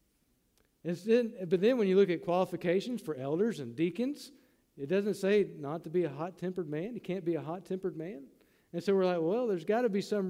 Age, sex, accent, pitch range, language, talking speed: 50-69, male, American, 145-190 Hz, English, 220 wpm